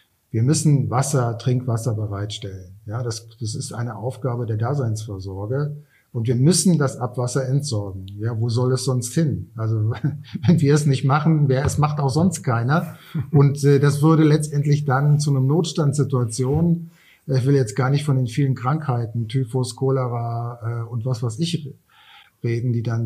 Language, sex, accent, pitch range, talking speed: German, male, German, 115-140 Hz, 170 wpm